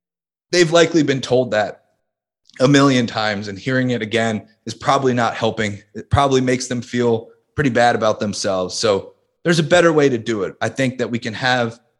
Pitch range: 115-140 Hz